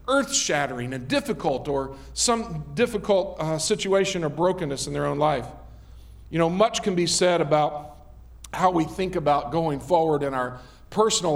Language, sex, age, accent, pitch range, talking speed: English, male, 50-69, American, 145-200 Hz, 160 wpm